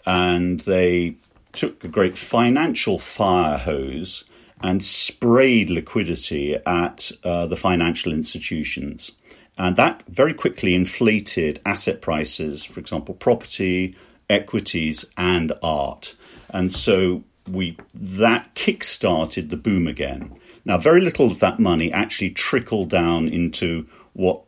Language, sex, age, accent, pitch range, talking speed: English, male, 50-69, British, 85-105 Hz, 120 wpm